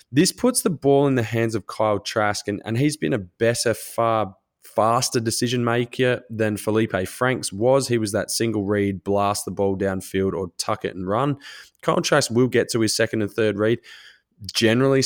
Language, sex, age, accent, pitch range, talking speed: English, male, 20-39, Australian, 100-120 Hz, 195 wpm